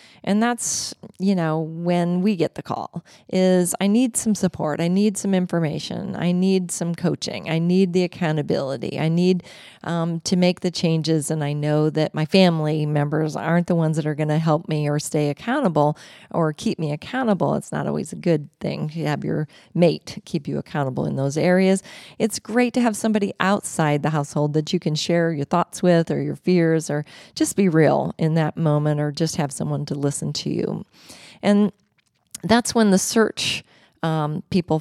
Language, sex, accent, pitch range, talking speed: English, female, American, 155-205 Hz, 195 wpm